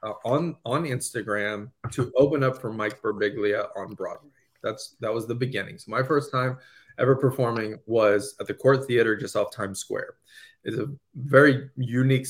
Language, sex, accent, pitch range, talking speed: English, male, American, 110-140 Hz, 175 wpm